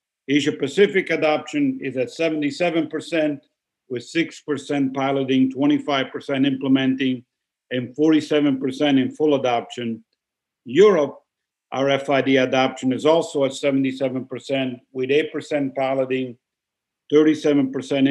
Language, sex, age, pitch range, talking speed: English, male, 50-69, 130-155 Hz, 90 wpm